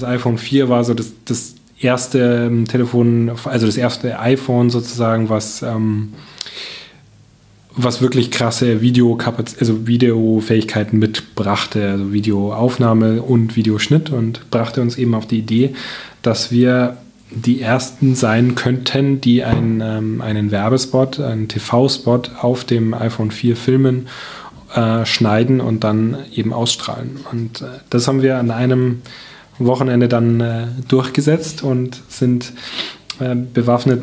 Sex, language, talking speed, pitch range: male, German, 125 wpm, 115-125 Hz